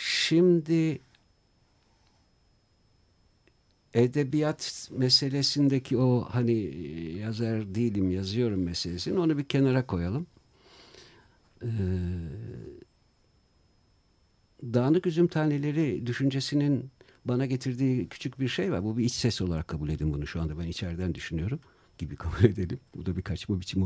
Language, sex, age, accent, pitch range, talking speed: Turkish, male, 60-79, native, 95-135 Hz, 115 wpm